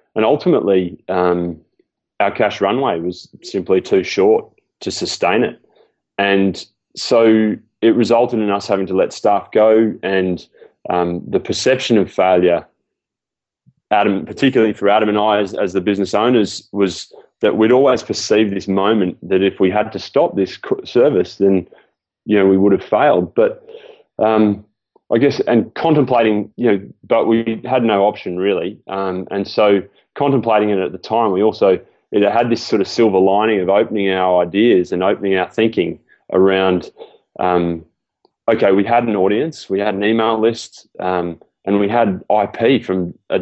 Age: 20-39